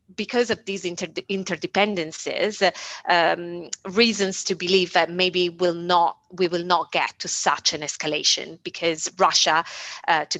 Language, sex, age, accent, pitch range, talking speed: English, female, 30-49, Italian, 165-195 Hz, 125 wpm